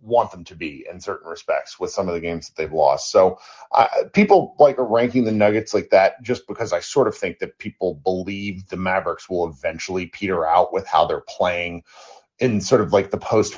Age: 40-59